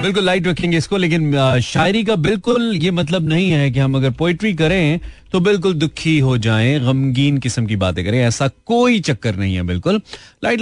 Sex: male